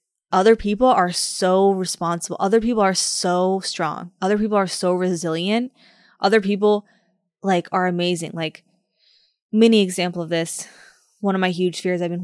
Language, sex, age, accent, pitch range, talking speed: English, female, 20-39, American, 175-210 Hz, 155 wpm